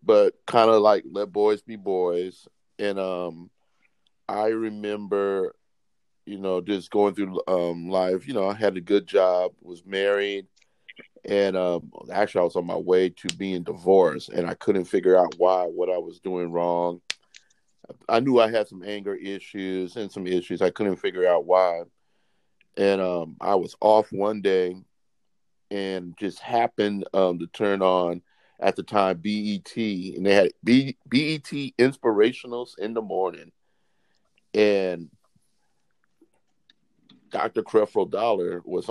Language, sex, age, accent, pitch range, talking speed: English, male, 40-59, American, 90-110 Hz, 150 wpm